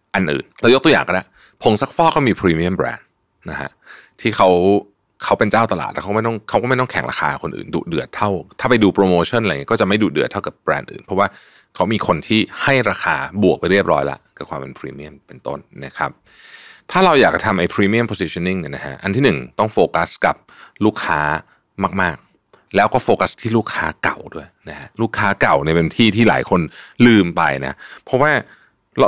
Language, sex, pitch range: Thai, male, 90-115 Hz